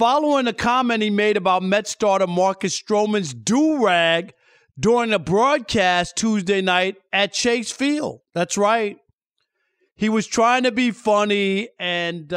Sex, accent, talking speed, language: male, American, 135 wpm, English